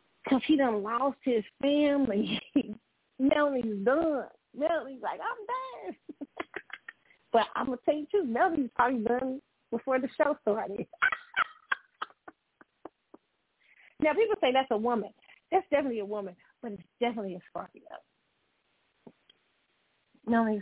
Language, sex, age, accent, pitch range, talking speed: English, female, 40-59, American, 215-285 Hz, 125 wpm